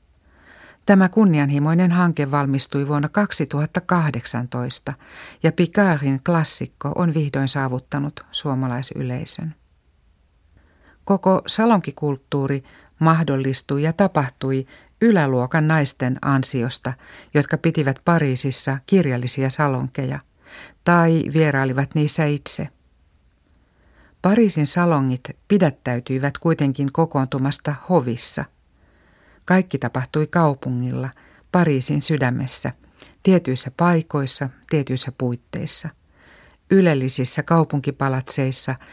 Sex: female